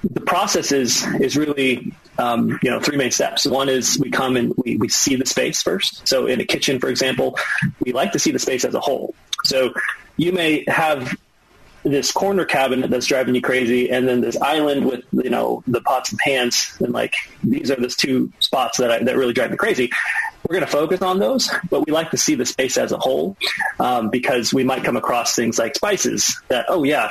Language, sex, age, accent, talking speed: English, male, 30-49, American, 225 wpm